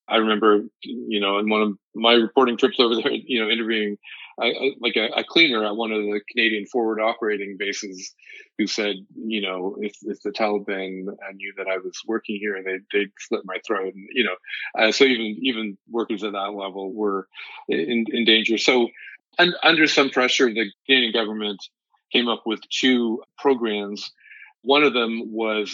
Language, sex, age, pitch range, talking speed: English, male, 40-59, 100-115 Hz, 190 wpm